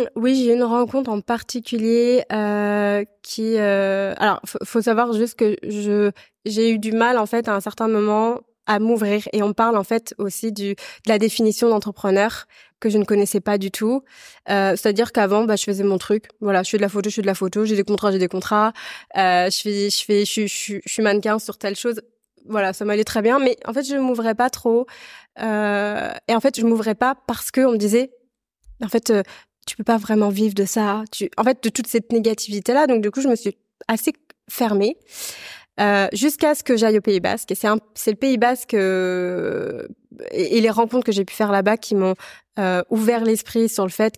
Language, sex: French, female